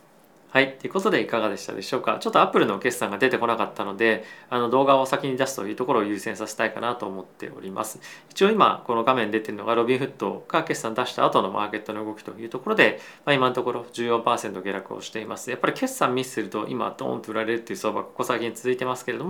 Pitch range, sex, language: 105-135 Hz, male, Japanese